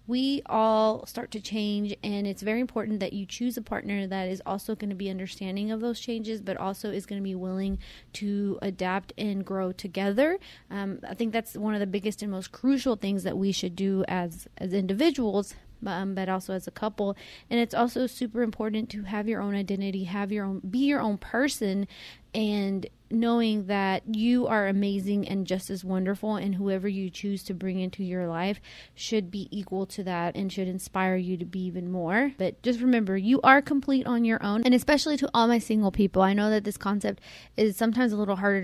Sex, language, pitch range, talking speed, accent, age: female, English, 190-220 Hz, 210 wpm, American, 30-49